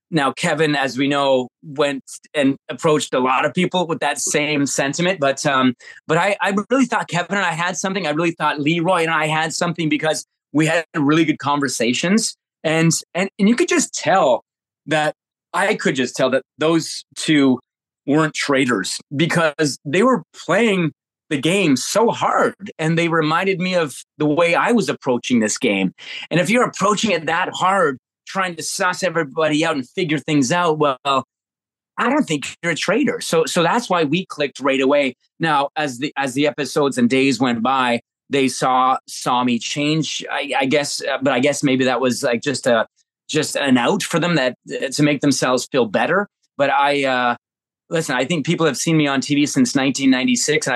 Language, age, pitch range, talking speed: English, 30-49, 135-170 Hz, 190 wpm